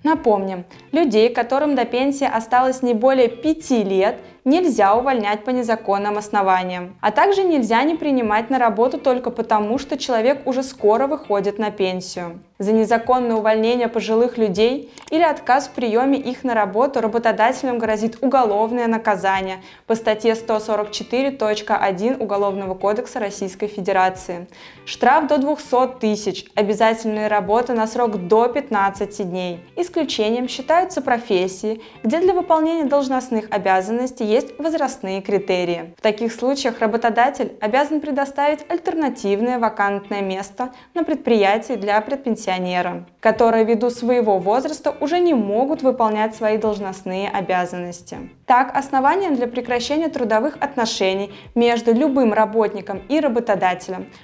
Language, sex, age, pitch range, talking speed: Russian, female, 20-39, 205-265 Hz, 125 wpm